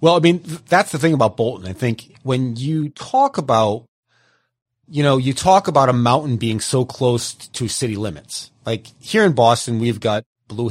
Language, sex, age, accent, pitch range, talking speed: English, male, 30-49, American, 105-135 Hz, 190 wpm